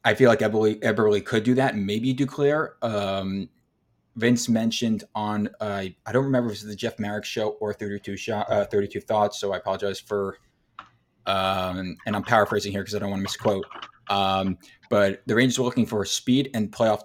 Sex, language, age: male, English, 20-39